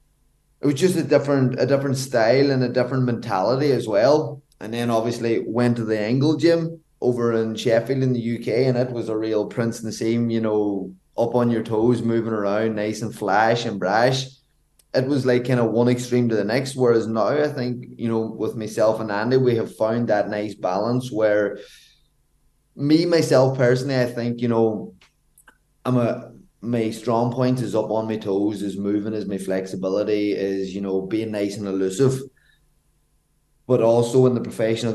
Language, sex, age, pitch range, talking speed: English, male, 20-39, 100-125 Hz, 190 wpm